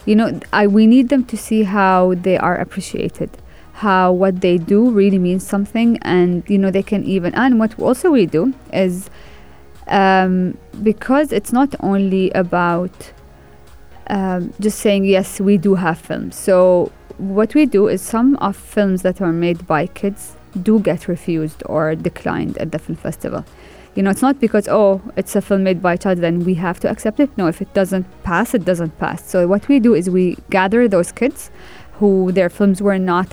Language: English